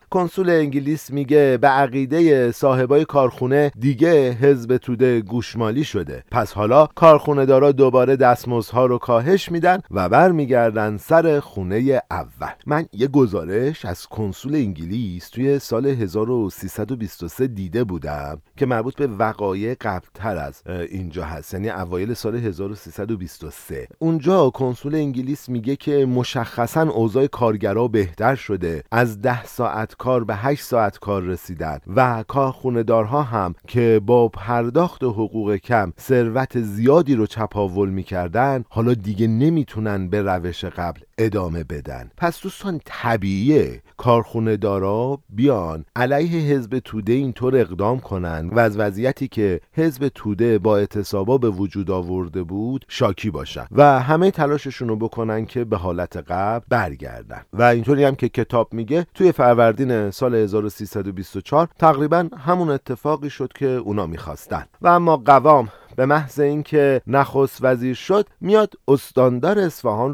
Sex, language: male, Persian